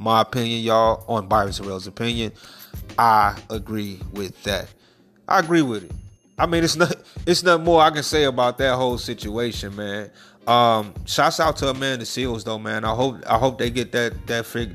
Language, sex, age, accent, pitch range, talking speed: English, male, 30-49, American, 105-130 Hz, 200 wpm